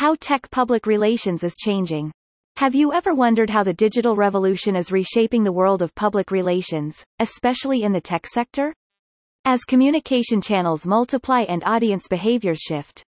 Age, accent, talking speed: 30-49, American, 155 wpm